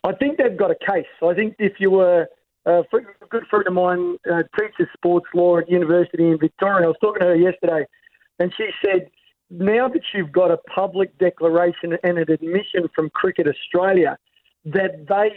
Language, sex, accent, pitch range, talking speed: English, male, Australian, 165-195 Hz, 195 wpm